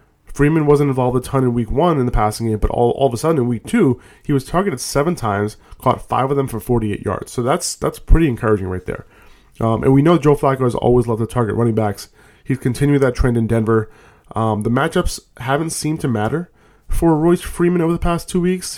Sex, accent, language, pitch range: male, American, English, 110-140 Hz